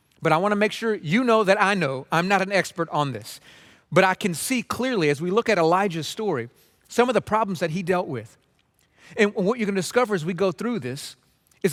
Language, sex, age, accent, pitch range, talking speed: English, male, 40-59, American, 170-220 Hz, 240 wpm